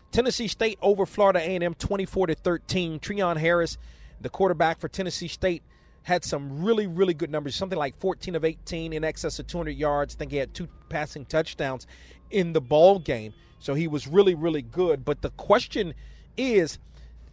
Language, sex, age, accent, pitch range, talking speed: English, male, 40-59, American, 135-180 Hz, 175 wpm